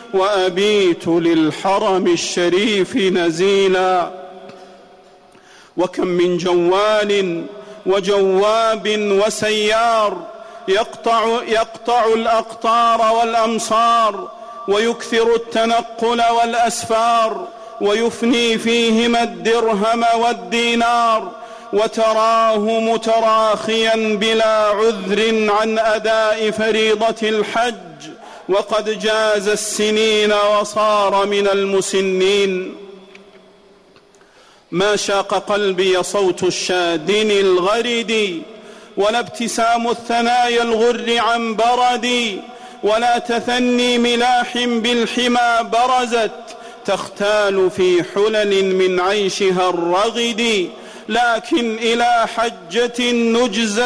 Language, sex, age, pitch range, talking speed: Arabic, male, 40-59, 200-235 Hz, 70 wpm